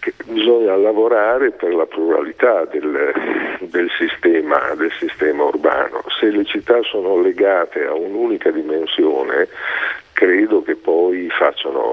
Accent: native